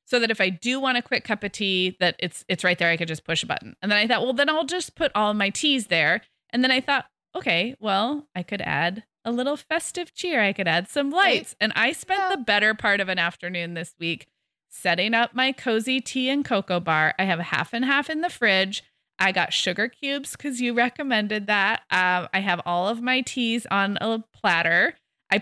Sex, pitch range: female, 185-250 Hz